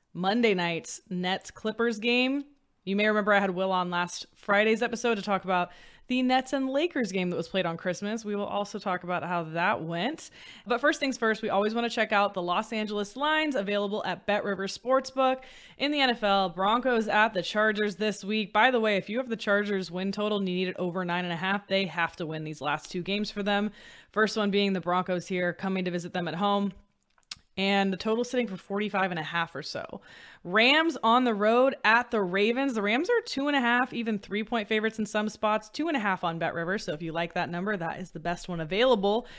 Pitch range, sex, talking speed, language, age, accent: 185-230 Hz, female, 235 wpm, English, 20-39, American